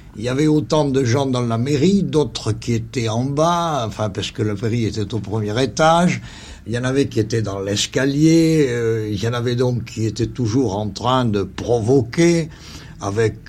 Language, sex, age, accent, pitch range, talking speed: French, male, 60-79, French, 90-130 Hz, 200 wpm